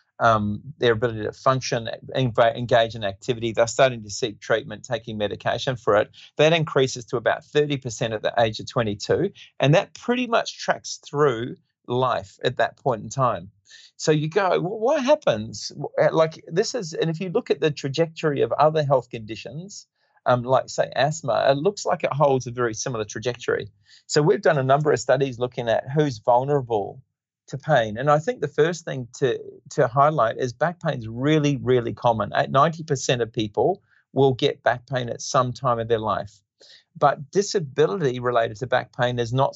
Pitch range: 115-145 Hz